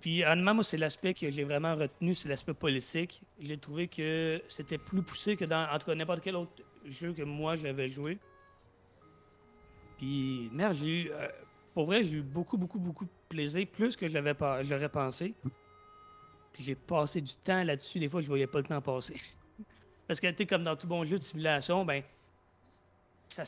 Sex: male